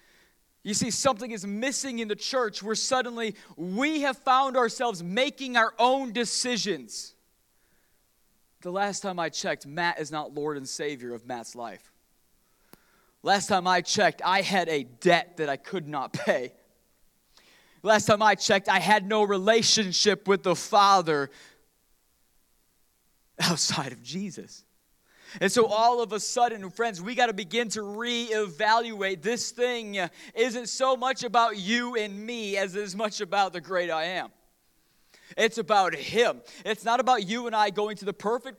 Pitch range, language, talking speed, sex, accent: 180-230 Hz, English, 160 wpm, male, American